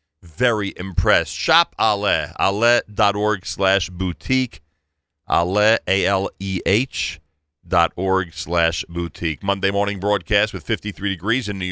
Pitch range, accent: 90-120 Hz, American